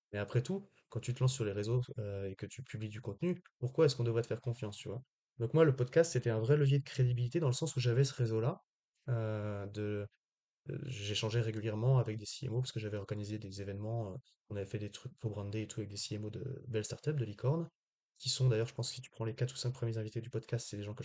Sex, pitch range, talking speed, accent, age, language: male, 110-135 Hz, 270 wpm, French, 20-39, French